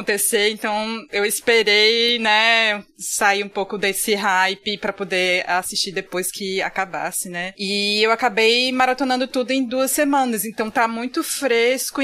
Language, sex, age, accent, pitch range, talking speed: Portuguese, female, 20-39, Brazilian, 205-265 Hz, 145 wpm